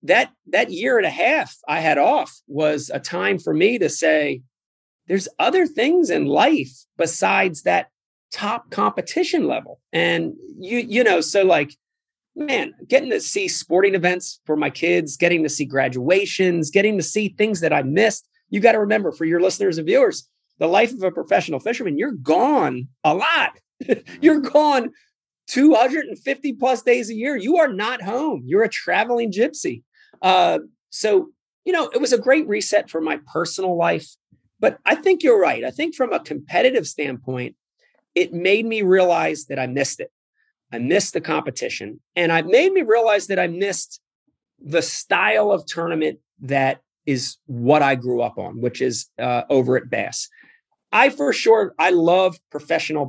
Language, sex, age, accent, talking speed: English, male, 30-49, American, 175 wpm